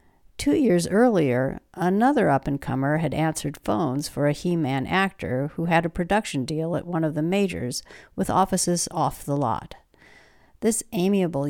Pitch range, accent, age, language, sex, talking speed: 140-180 Hz, American, 60-79, English, female, 150 wpm